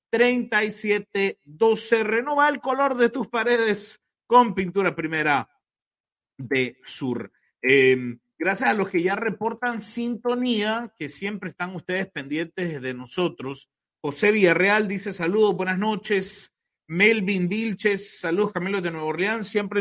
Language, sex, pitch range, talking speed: Spanish, male, 145-210 Hz, 125 wpm